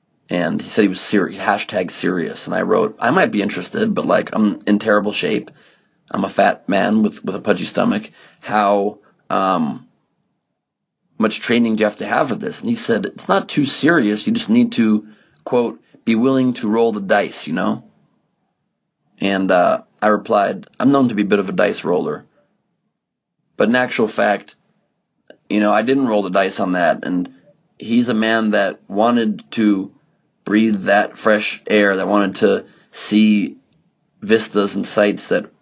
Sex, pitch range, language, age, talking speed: male, 100-120 Hz, English, 30-49, 180 wpm